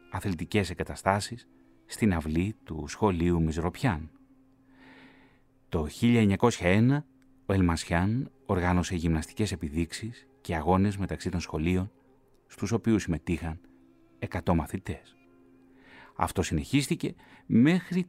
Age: 30-49